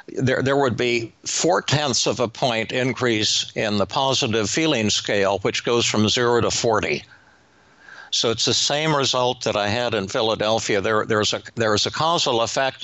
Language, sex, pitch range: English, male, 105-130 Hz